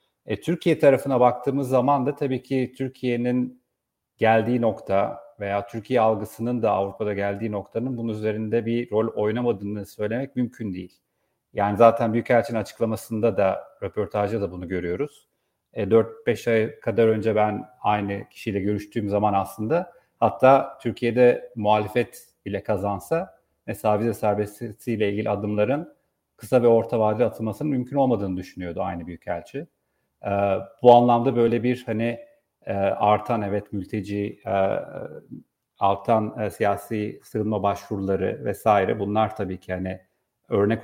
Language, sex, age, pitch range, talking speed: Turkish, male, 40-59, 105-125 Hz, 130 wpm